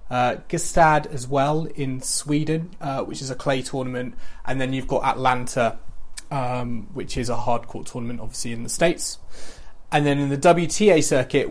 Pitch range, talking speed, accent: 125-145 Hz, 170 wpm, British